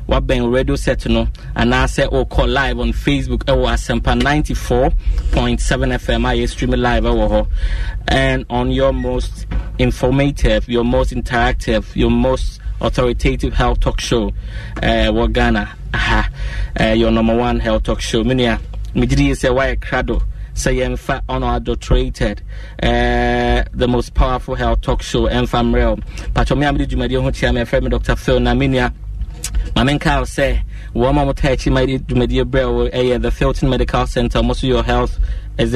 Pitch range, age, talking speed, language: 110-125 Hz, 20-39, 165 wpm, English